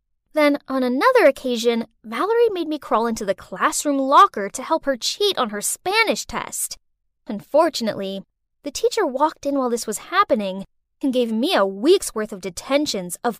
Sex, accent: female, American